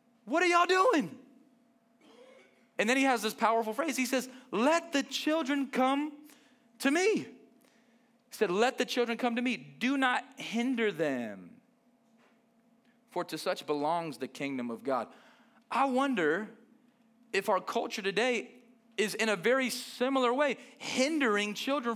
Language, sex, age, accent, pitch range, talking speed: English, male, 30-49, American, 230-265 Hz, 145 wpm